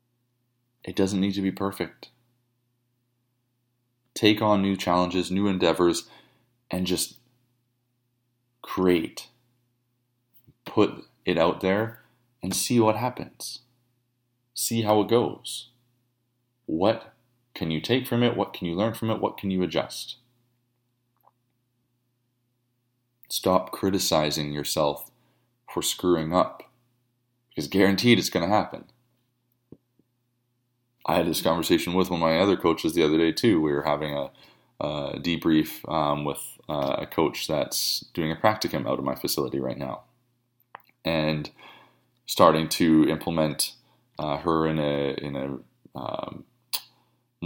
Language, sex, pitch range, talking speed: English, male, 85-120 Hz, 125 wpm